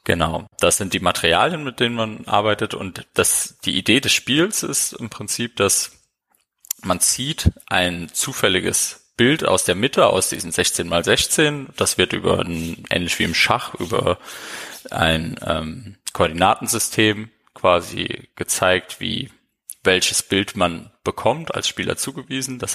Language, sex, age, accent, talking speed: German, male, 30-49, German, 140 wpm